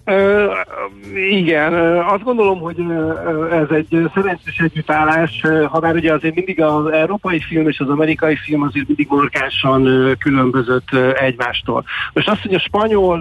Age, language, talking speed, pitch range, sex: 60-79, Hungarian, 165 wpm, 135-160 Hz, male